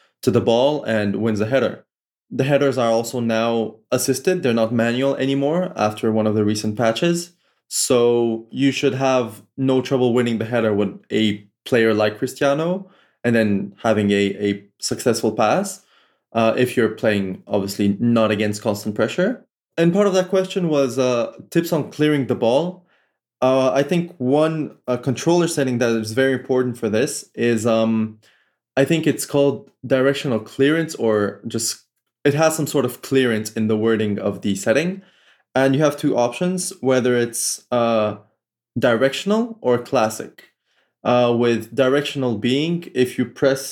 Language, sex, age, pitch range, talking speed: English, male, 20-39, 110-140 Hz, 160 wpm